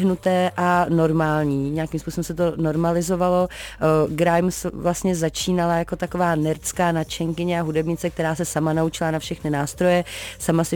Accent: native